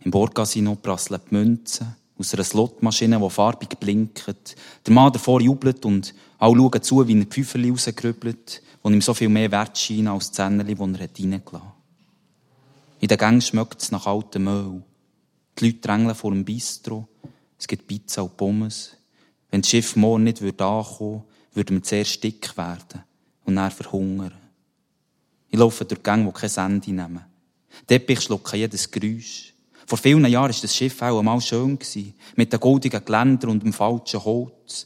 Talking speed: 175 wpm